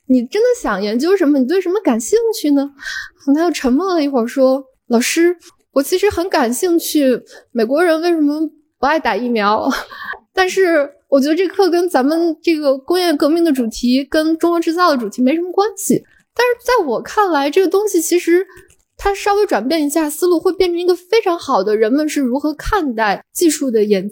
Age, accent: 10-29, native